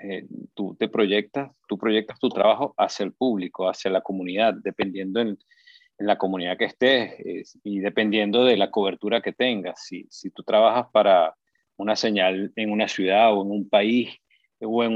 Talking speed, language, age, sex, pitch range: 185 wpm, English, 40-59, male, 105-130 Hz